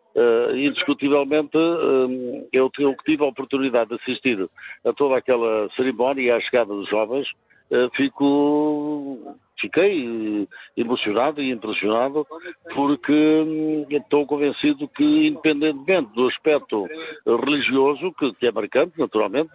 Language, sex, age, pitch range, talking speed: Portuguese, male, 60-79, 125-150 Hz, 120 wpm